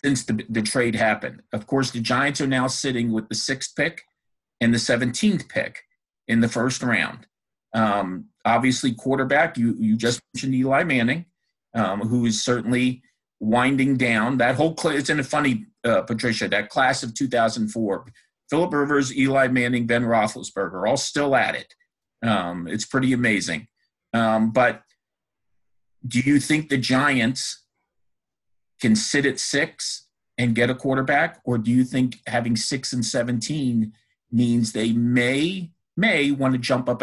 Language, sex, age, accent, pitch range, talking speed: English, male, 50-69, American, 115-145 Hz, 150 wpm